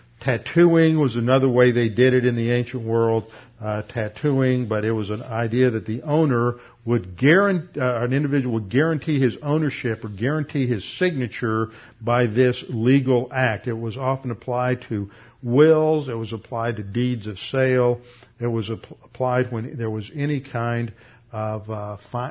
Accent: American